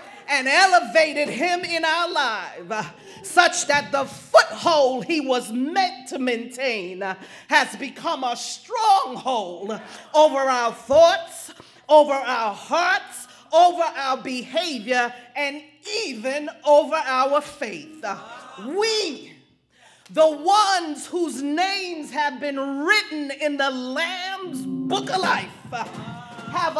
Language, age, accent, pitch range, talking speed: English, 40-59, American, 280-375 Hz, 105 wpm